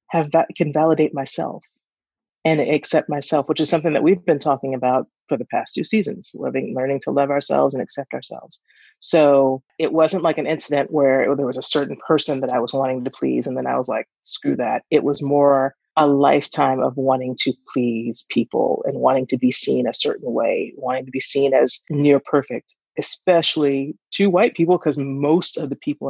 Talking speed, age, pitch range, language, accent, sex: 195 wpm, 30-49, 135-175 Hz, English, American, female